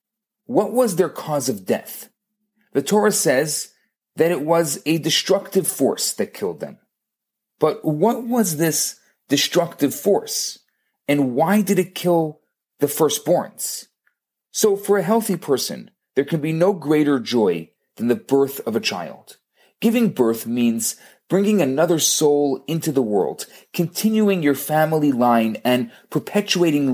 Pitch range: 145-200 Hz